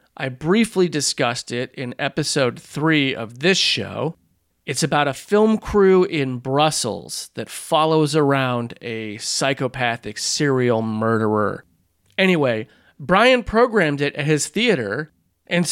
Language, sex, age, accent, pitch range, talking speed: English, male, 30-49, American, 130-180 Hz, 120 wpm